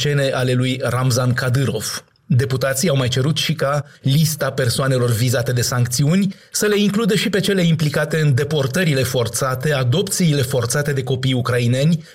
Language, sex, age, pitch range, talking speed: Romanian, male, 30-49, 125-155 Hz, 155 wpm